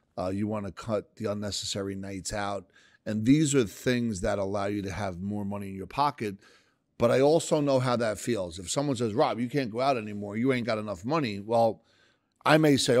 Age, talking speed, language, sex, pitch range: 40-59, 220 wpm, English, male, 105-135 Hz